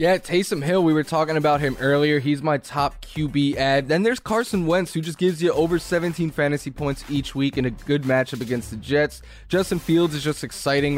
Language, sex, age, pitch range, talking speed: English, male, 10-29, 130-155 Hz, 220 wpm